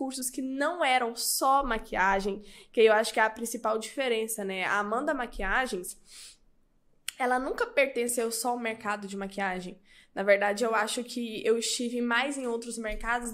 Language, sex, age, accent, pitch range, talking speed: Portuguese, female, 10-29, Brazilian, 230-285 Hz, 165 wpm